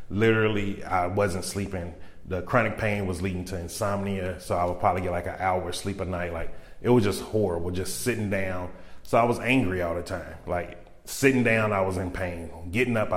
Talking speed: 215 wpm